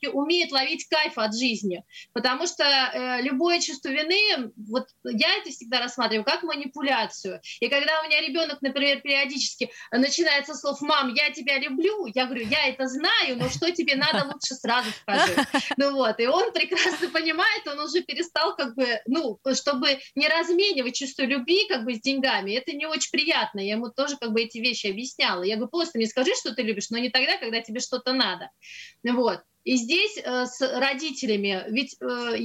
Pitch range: 240-305 Hz